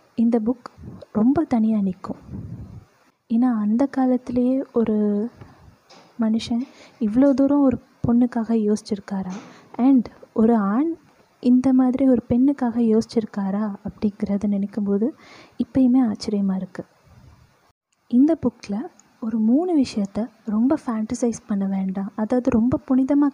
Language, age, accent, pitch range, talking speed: Tamil, 20-39, native, 215-260 Hz, 105 wpm